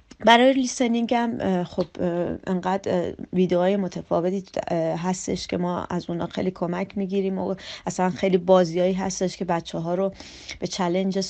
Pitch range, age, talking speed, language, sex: 180-225 Hz, 30-49, 140 wpm, Persian, female